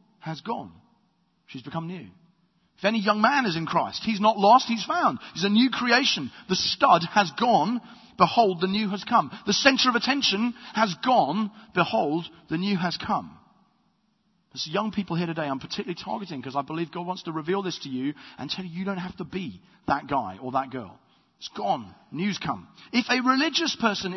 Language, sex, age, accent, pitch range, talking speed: English, male, 40-59, British, 160-220 Hz, 200 wpm